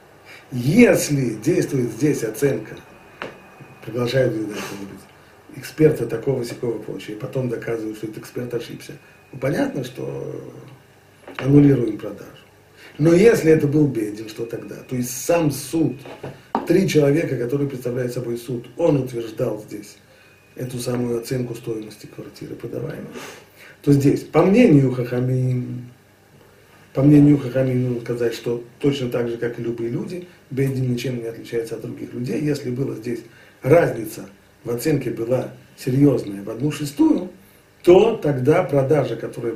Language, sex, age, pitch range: Russian, male, 40-59, 115-150 Hz